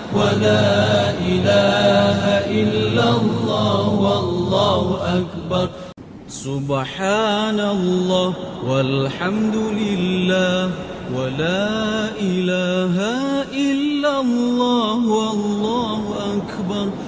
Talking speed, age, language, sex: 55 wpm, 30-49, Arabic, male